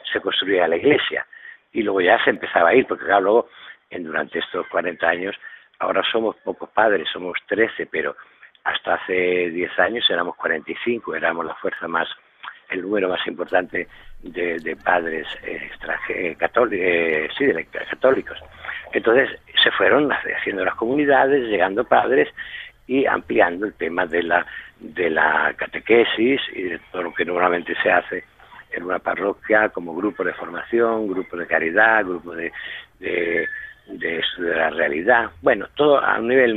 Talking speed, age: 155 wpm, 60-79